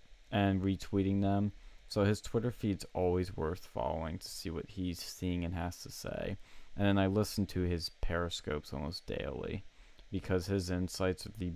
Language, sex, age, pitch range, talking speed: English, male, 20-39, 90-105 Hz, 170 wpm